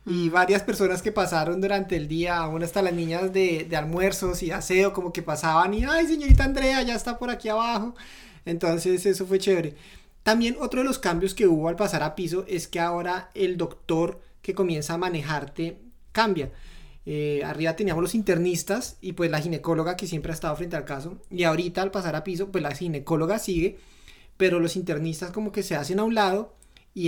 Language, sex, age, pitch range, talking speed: Spanish, male, 30-49, 170-210 Hz, 200 wpm